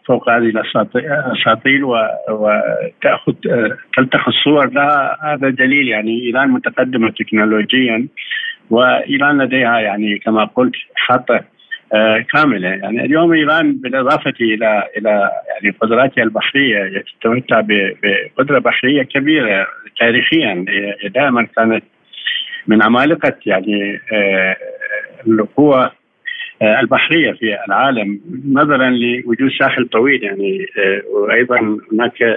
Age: 50-69